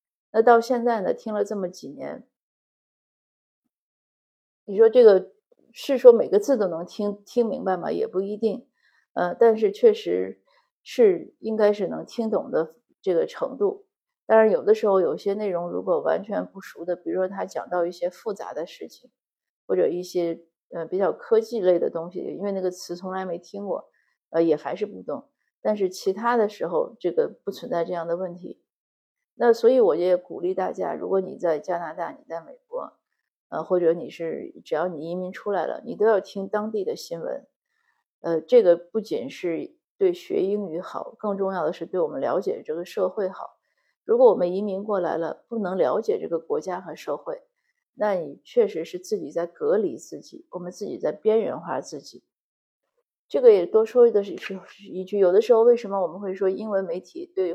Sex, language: female, Chinese